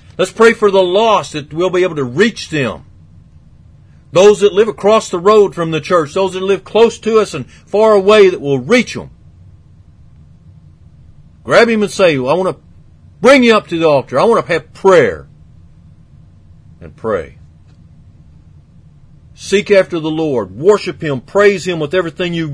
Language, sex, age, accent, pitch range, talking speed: English, male, 50-69, American, 135-200 Hz, 175 wpm